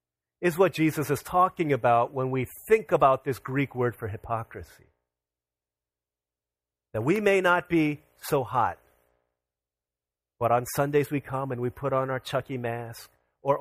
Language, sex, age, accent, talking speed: English, male, 40-59, American, 155 wpm